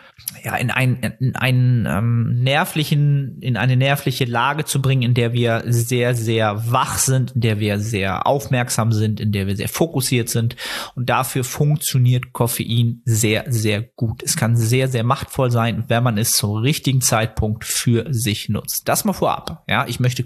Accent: German